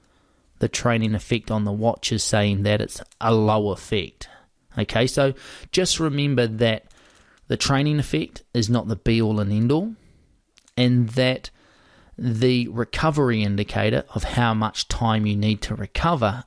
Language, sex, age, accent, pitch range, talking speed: English, male, 20-39, Australian, 110-130 Hz, 145 wpm